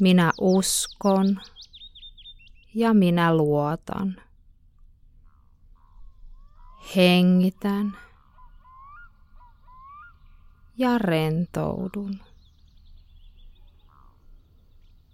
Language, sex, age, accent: Finnish, female, 20-39, native